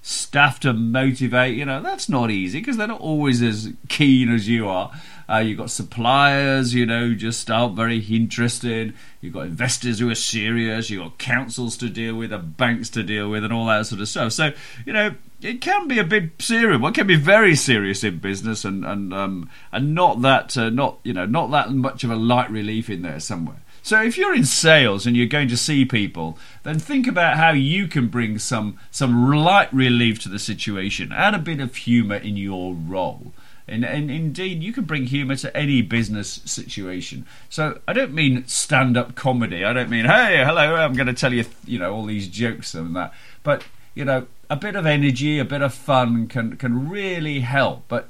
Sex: male